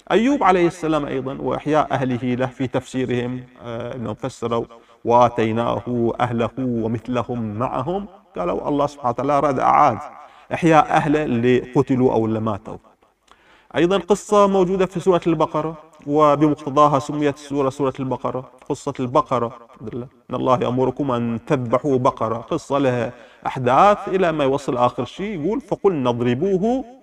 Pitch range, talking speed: 120-160 Hz, 125 wpm